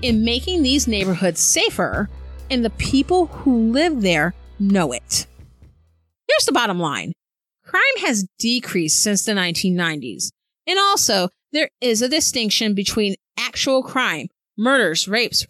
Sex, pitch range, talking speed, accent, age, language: female, 195-275 Hz, 130 wpm, American, 30-49, English